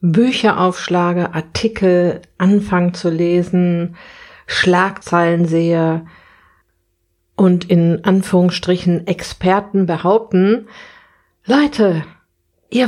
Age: 50-69